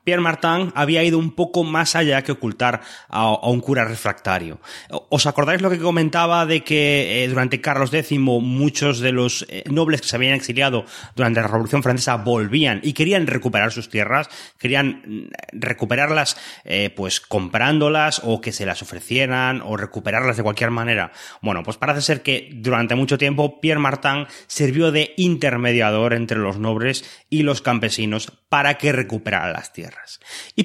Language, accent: Spanish, Spanish